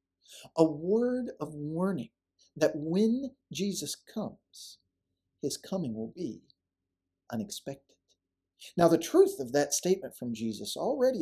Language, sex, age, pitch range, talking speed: English, male, 40-59, 120-195 Hz, 120 wpm